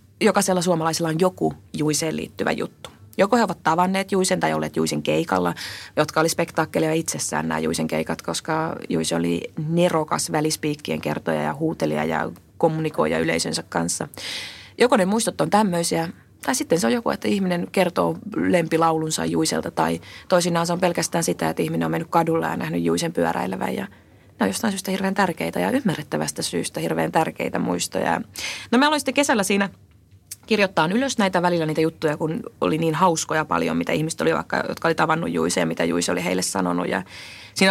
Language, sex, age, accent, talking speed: Finnish, female, 30-49, native, 175 wpm